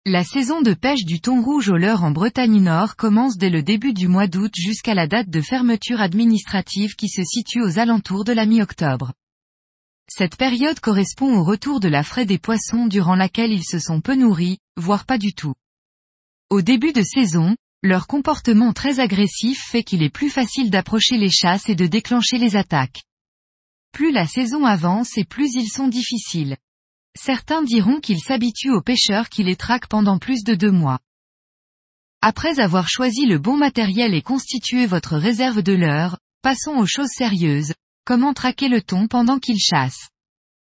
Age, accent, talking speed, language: 20-39, French, 180 wpm, French